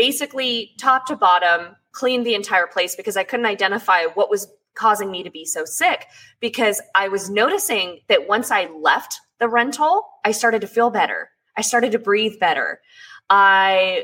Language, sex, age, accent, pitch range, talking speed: English, female, 20-39, American, 190-235 Hz, 175 wpm